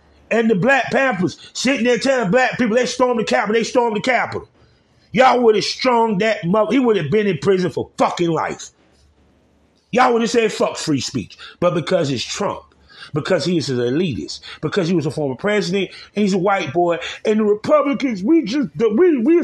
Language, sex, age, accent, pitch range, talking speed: English, male, 30-49, American, 180-260 Hz, 200 wpm